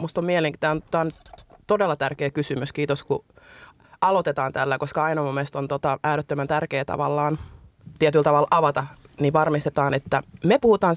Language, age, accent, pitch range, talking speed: English, 20-39, Finnish, 140-155 Hz, 140 wpm